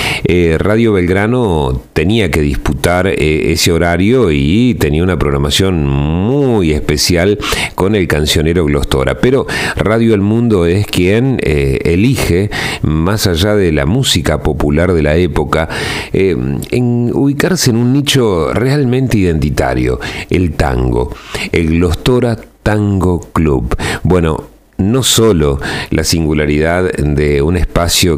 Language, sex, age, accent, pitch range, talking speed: Spanish, male, 40-59, Argentinian, 75-95 Hz, 120 wpm